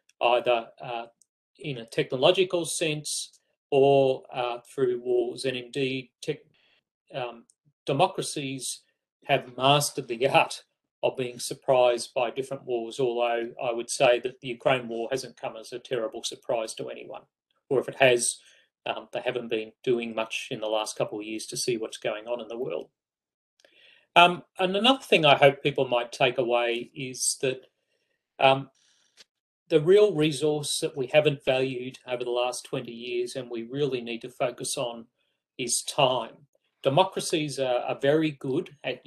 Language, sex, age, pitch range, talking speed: English, male, 40-59, 120-150 Hz, 160 wpm